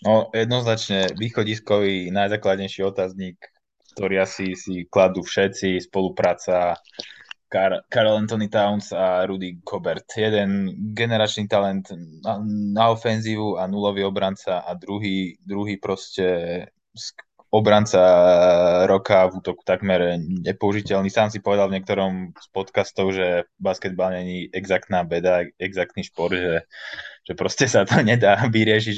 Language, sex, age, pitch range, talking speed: Slovak, male, 20-39, 90-105 Hz, 120 wpm